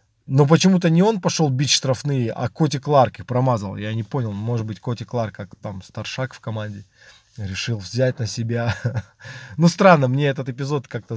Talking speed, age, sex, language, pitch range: 185 wpm, 20-39, male, Russian, 115-145 Hz